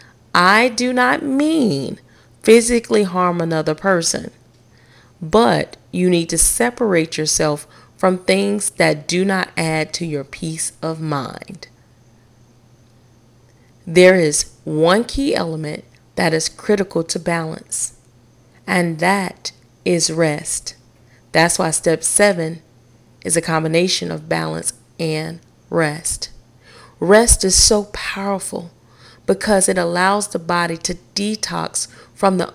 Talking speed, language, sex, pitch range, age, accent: 115 wpm, English, female, 125-195 Hz, 40-59, American